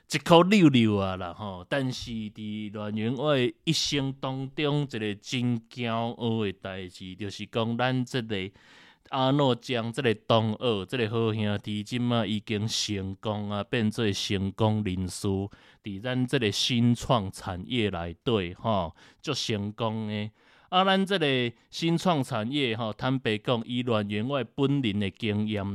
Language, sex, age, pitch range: Chinese, male, 20-39, 105-130 Hz